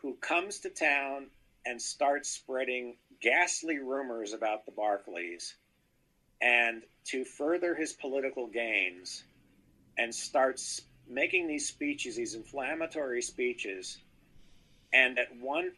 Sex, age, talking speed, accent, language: male, 50-69, 110 wpm, American, English